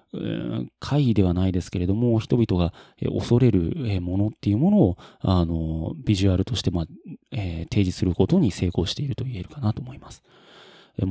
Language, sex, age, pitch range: Japanese, male, 30-49, 90-130 Hz